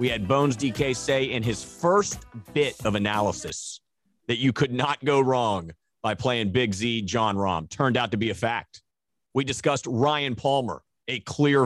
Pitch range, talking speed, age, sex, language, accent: 110-145 Hz, 180 wpm, 30-49, male, English, American